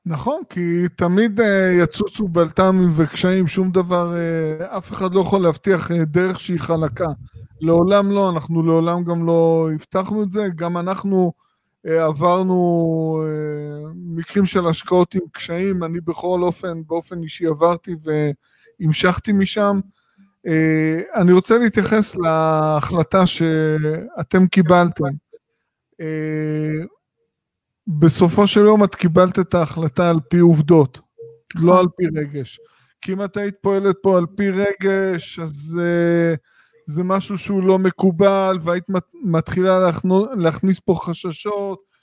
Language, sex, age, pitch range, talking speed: Hebrew, male, 20-39, 165-195 Hz, 115 wpm